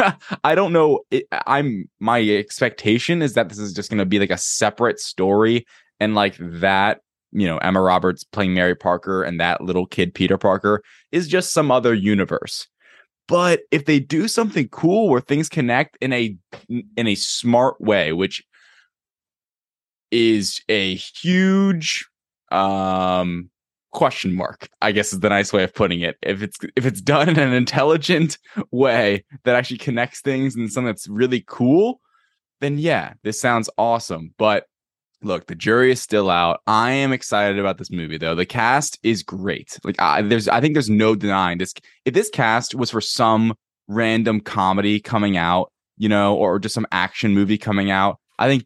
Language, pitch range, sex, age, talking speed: English, 95-135 Hz, male, 20-39, 175 wpm